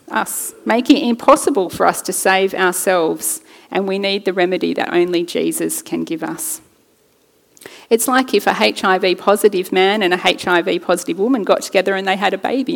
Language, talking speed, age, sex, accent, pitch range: English, 185 wpm, 40-59, female, Australian, 190-305 Hz